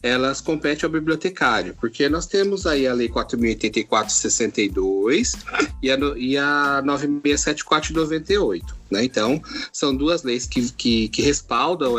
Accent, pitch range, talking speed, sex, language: Brazilian, 125-190 Hz, 120 wpm, male, Portuguese